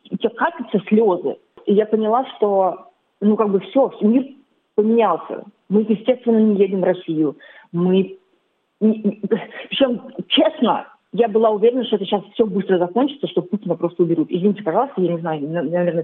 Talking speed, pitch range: 150 wpm, 180-225 Hz